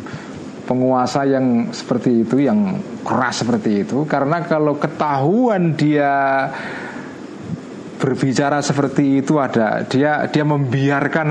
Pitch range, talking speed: 125-165 Hz, 100 wpm